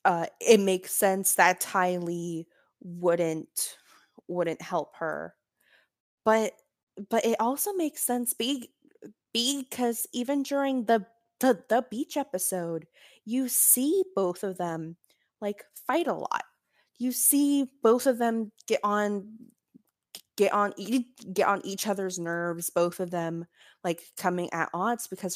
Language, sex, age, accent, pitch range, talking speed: English, female, 20-39, American, 175-235 Hz, 135 wpm